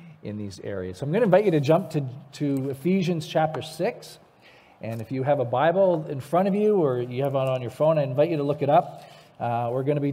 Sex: male